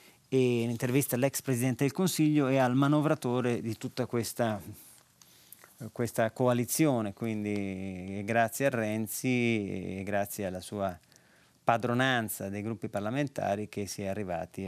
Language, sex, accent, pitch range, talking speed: Italian, male, native, 105-130 Hz, 125 wpm